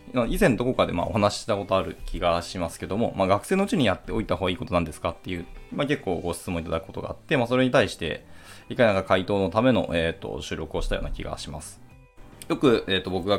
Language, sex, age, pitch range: Japanese, male, 20-39, 90-125 Hz